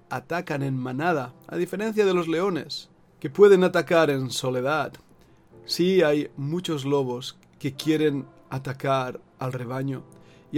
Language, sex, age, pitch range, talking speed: Spanish, male, 40-59, 135-175 Hz, 130 wpm